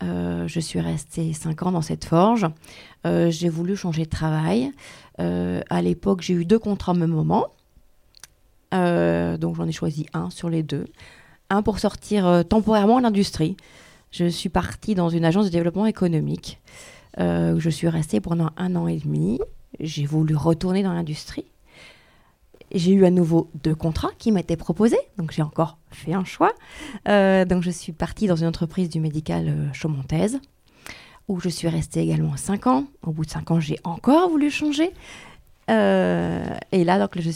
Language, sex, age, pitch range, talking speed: French, female, 30-49, 155-195 Hz, 180 wpm